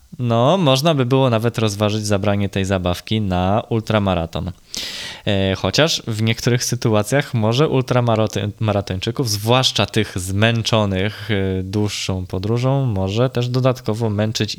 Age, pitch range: 20-39, 100-130 Hz